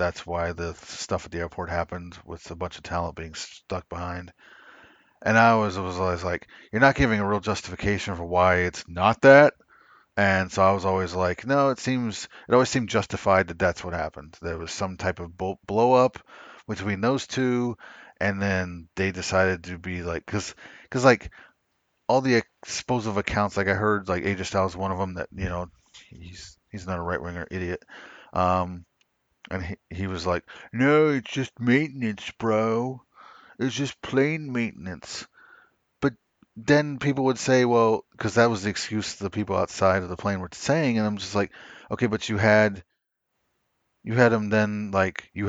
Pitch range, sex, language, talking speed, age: 90-110 Hz, male, English, 185 wpm, 30-49